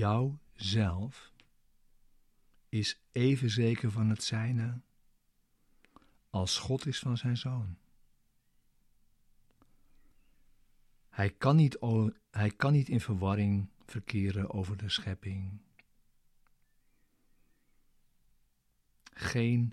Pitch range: 100-115 Hz